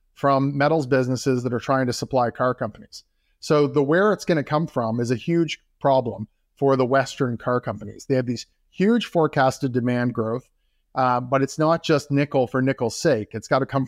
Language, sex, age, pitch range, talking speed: English, male, 30-49, 125-150 Hz, 195 wpm